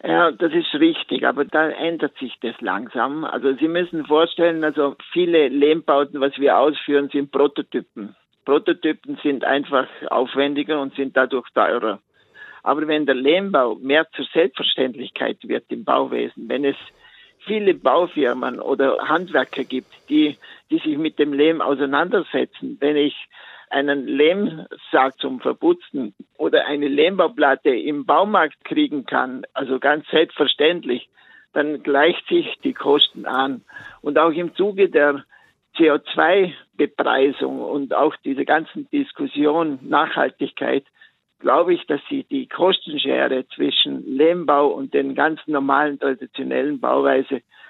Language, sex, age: German, male, 60-79